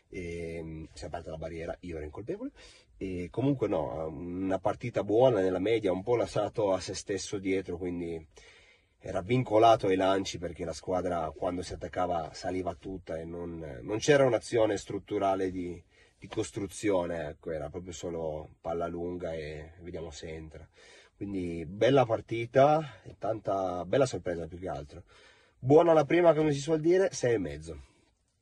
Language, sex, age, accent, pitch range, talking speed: Italian, male, 30-49, native, 85-105 Hz, 160 wpm